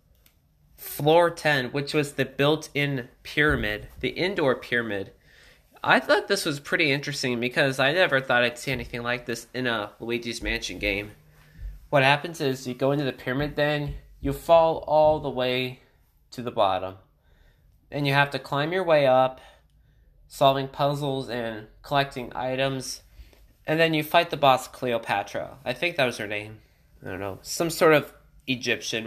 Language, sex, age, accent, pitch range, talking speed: English, male, 20-39, American, 115-145 Hz, 165 wpm